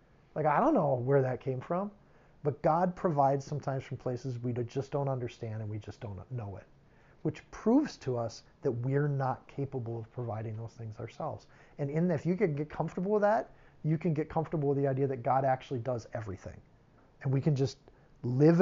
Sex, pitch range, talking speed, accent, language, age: male, 125-160 Hz, 200 wpm, American, English, 40-59